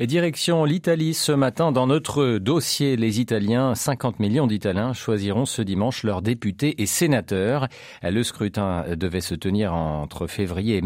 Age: 40-59